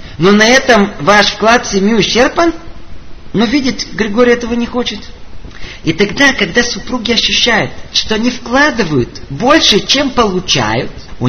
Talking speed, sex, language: 140 wpm, male, Russian